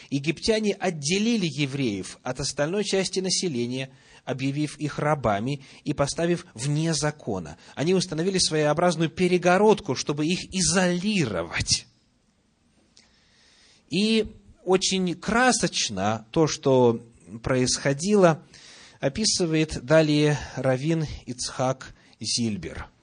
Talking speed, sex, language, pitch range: 85 wpm, male, Russian, 135-180 Hz